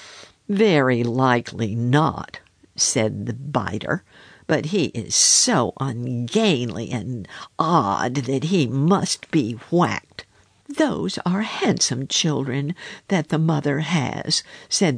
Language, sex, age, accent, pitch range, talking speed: English, female, 60-79, American, 130-220 Hz, 110 wpm